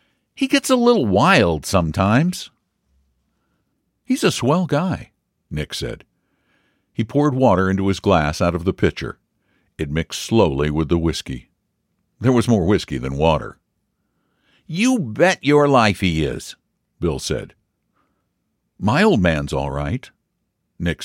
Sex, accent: male, American